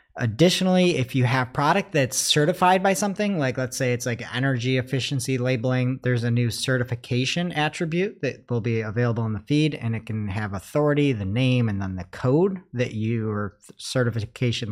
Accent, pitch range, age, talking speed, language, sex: American, 110-140 Hz, 40-59, 175 wpm, English, male